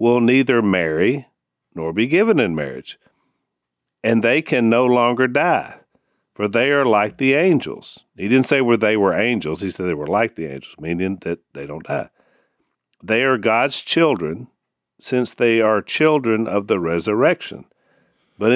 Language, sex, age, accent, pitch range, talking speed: English, male, 50-69, American, 90-120 Hz, 165 wpm